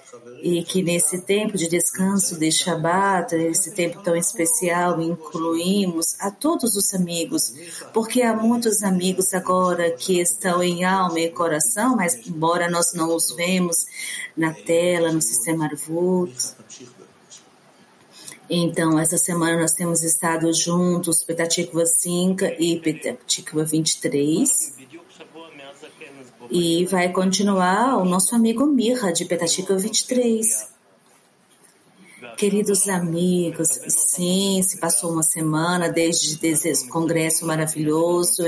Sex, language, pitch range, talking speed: female, English, 160-185 Hz, 115 wpm